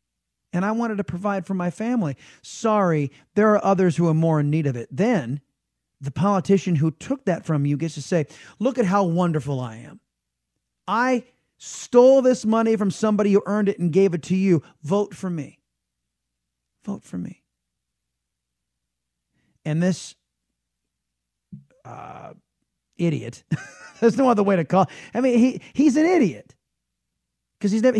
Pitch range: 135-205 Hz